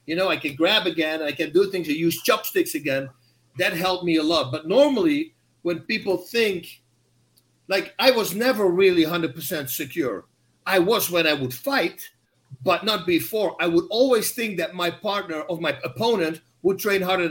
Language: English